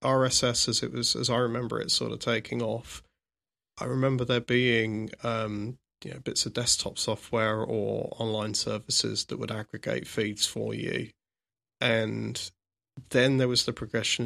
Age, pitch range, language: 20-39, 110-120 Hz, English